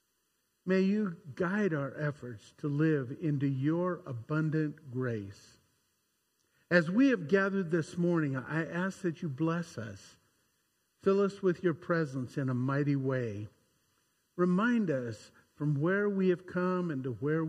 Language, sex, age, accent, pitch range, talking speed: English, male, 50-69, American, 135-175 Hz, 145 wpm